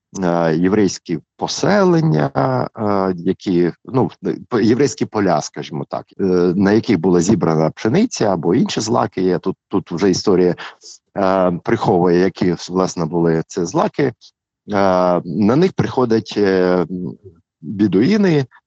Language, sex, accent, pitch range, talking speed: Ukrainian, male, native, 90-120 Hz, 105 wpm